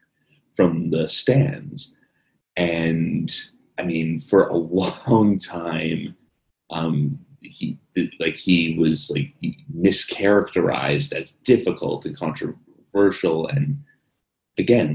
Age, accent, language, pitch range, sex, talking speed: 30-49, American, English, 80-90 Hz, male, 90 wpm